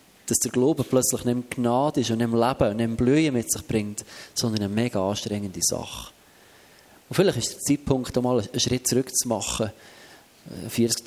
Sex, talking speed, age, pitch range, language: male, 175 wpm, 30-49, 115-135 Hz, German